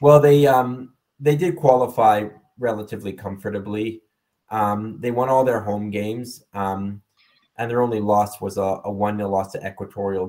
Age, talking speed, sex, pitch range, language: 20-39, 150 wpm, male, 100-125 Hz, English